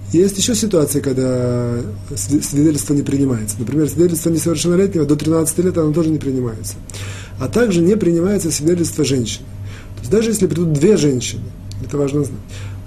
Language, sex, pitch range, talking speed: Russian, male, 115-170 Hz, 155 wpm